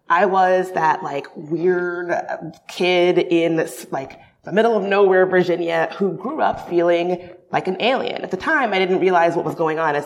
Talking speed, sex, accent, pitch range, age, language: 185 wpm, female, American, 165-195 Hz, 30-49, English